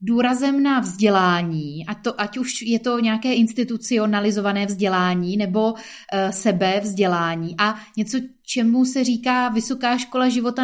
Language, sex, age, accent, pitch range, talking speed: Czech, female, 20-39, native, 200-240 Hz, 135 wpm